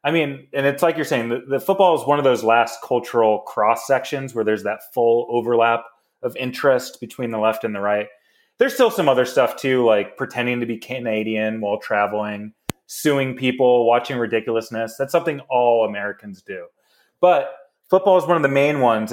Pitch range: 120-160 Hz